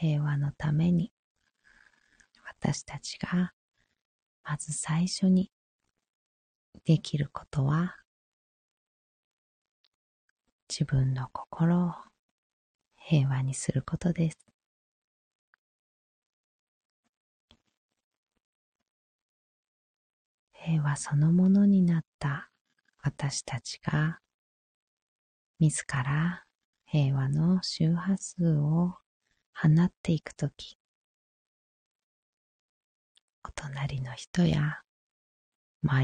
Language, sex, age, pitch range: Japanese, female, 30-49, 135-175 Hz